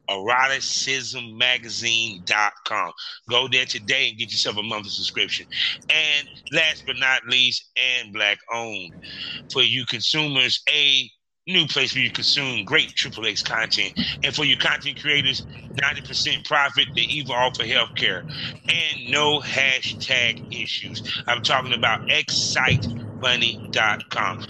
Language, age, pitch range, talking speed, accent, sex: English, 30-49, 120-140 Hz, 125 wpm, American, male